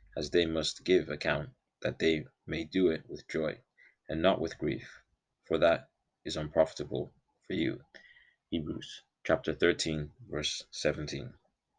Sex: male